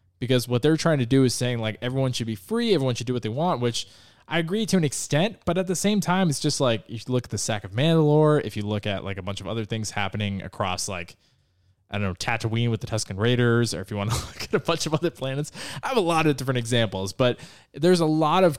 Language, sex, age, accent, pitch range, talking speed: English, male, 20-39, American, 105-145 Hz, 280 wpm